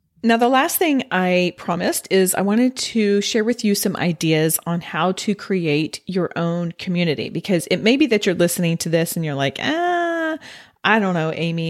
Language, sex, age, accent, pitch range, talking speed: English, female, 40-59, American, 165-215 Hz, 200 wpm